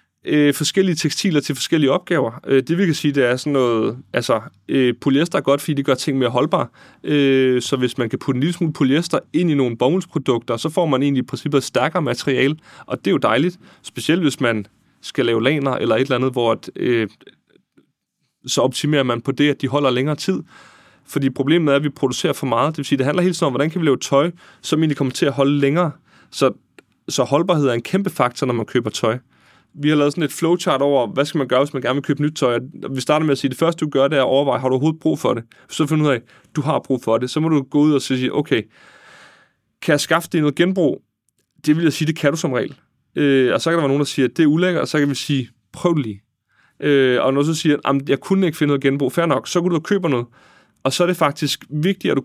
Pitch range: 130-160 Hz